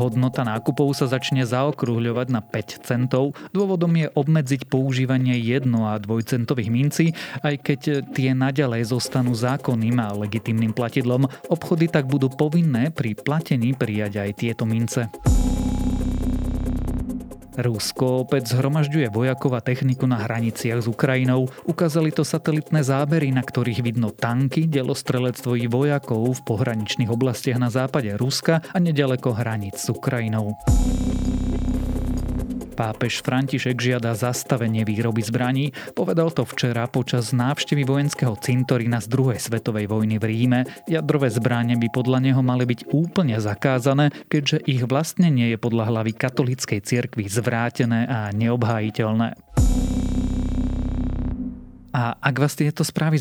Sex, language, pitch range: male, Slovak, 115-140 Hz